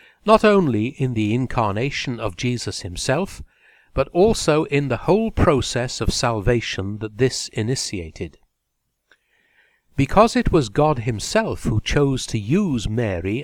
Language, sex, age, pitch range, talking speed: English, male, 60-79, 105-145 Hz, 130 wpm